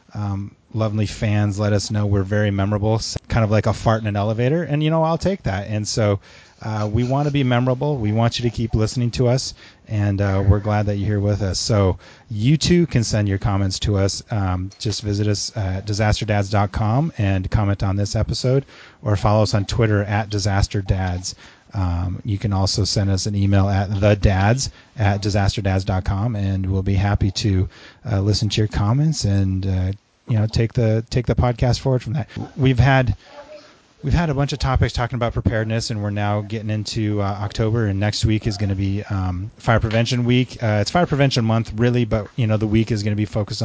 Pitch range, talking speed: 100-115 Hz, 215 wpm